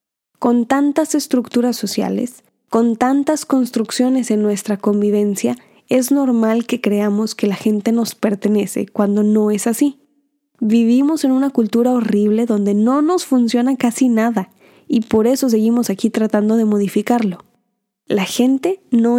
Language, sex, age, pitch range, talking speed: Spanish, female, 10-29, 215-255 Hz, 140 wpm